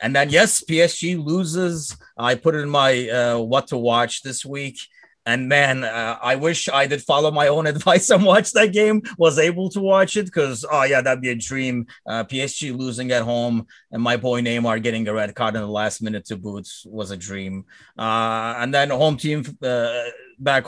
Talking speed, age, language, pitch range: 205 wpm, 30-49, English, 115-155 Hz